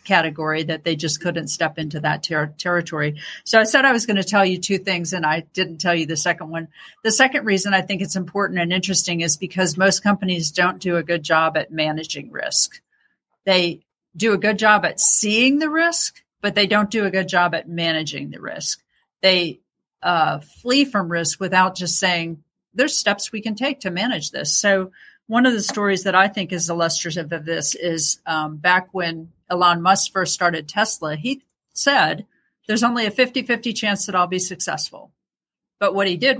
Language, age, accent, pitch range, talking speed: English, 50-69, American, 170-205 Hz, 200 wpm